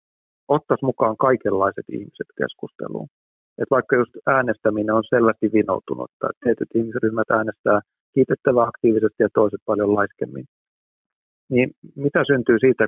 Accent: native